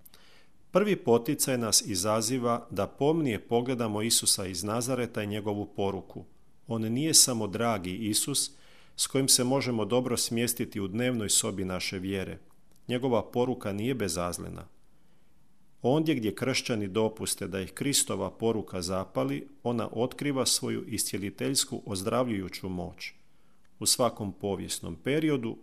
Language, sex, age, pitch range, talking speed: Croatian, male, 40-59, 100-125 Hz, 120 wpm